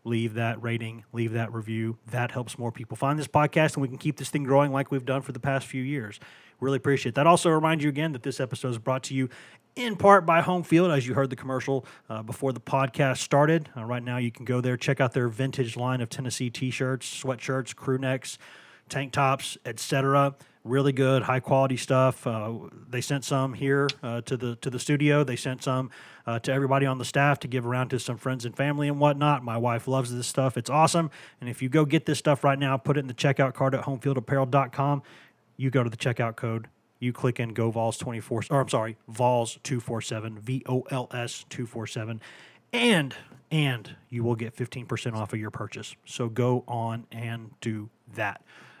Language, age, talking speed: English, 30-49, 210 wpm